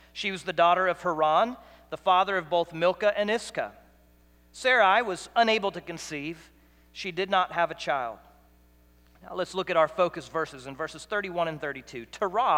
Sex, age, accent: male, 40-59, American